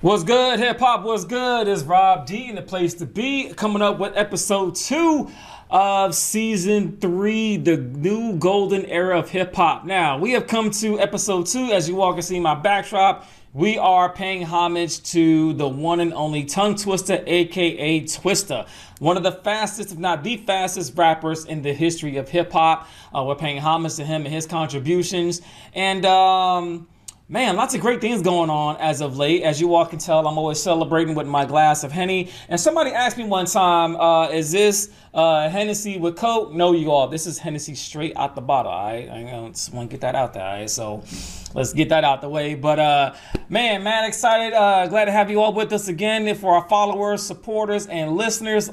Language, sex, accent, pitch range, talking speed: English, male, American, 160-205 Hz, 195 wpm